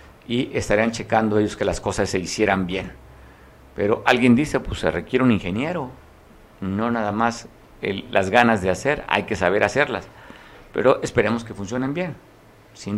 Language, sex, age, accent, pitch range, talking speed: Spanish, male, 50-69, Mexican, 105-125 Hz, 165 wpm